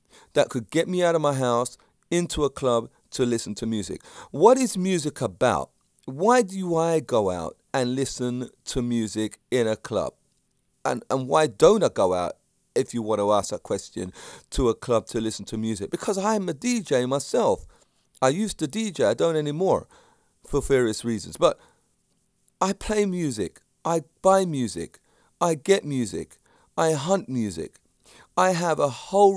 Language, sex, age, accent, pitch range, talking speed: English, male, 40-59, British, 125-180 Hz, 170 wpm